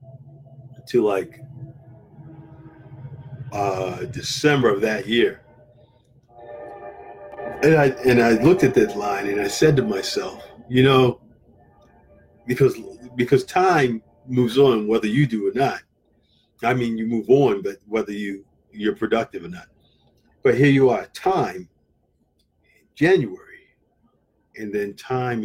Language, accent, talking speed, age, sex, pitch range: English, American, 125 wpm, 50-69, male, 105-135 Hz